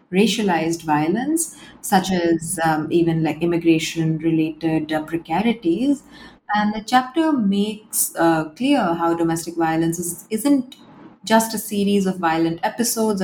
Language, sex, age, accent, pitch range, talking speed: English, female, 30-49, Indian, 165-210 Hz, 115 wpm